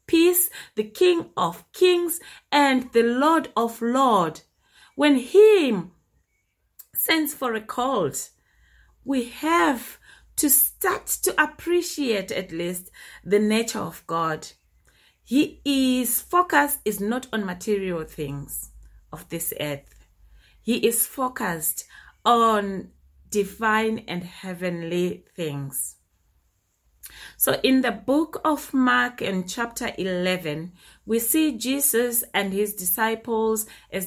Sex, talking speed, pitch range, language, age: female, 110 wpm, 185-270 Hz, English, 30-49